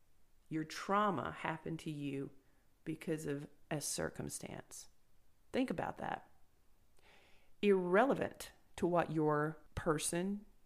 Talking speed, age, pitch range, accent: 95 wpm, 40-59, 150-180 Hz, American